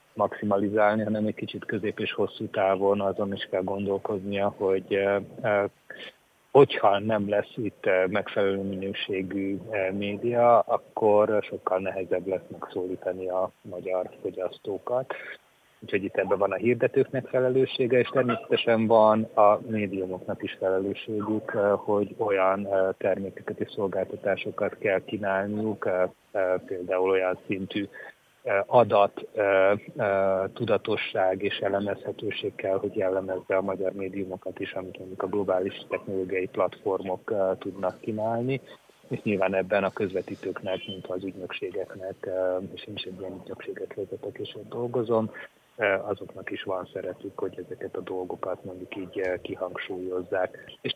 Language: Hungarian